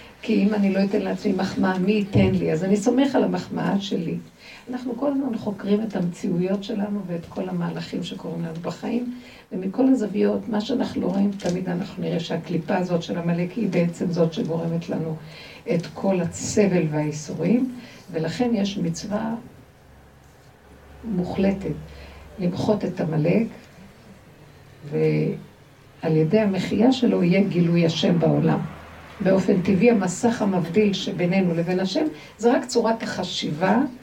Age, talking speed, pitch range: 60-79, 135 wpm, 175-230 Hz